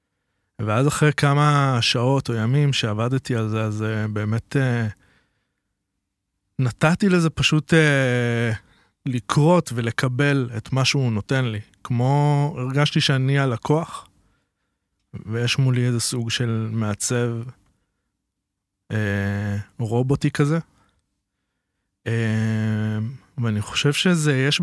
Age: 20-39